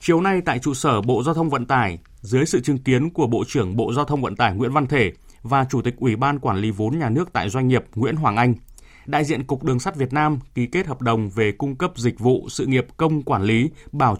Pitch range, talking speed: 115-150 Hz, 265 wpm